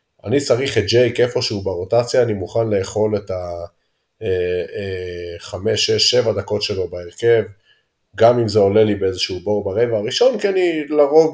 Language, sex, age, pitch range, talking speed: Hebrew, male, 30-49, 95-155 Hz, 150 wpm